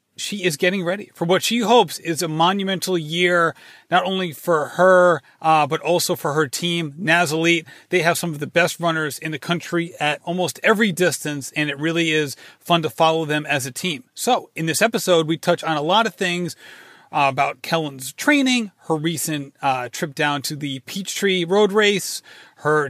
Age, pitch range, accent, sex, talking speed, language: 30-49, 155-190 Hz, American, male, 195 wpm, English